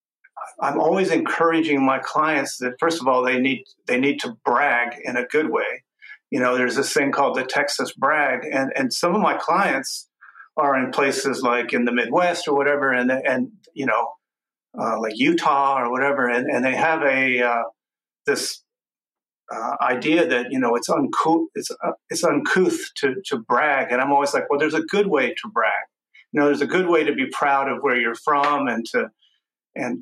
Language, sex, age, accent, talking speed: English, male, 50-69, American, 200 wpm